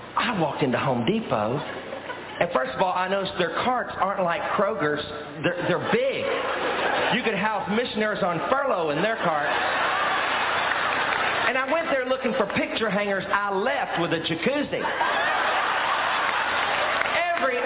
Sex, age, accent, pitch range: male, 40-59, American, 175-245 Hz